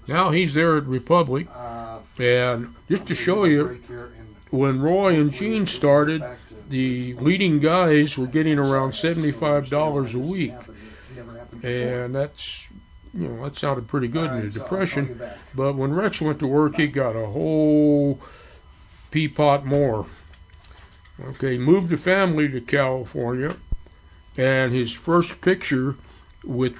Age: 60-79